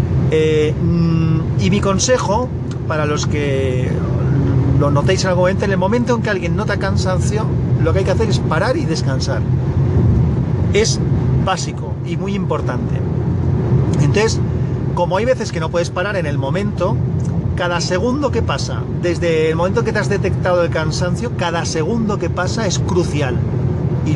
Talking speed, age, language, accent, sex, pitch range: 160 wpm, 40-59, Spanish, Spanish, male, 125-150 Hz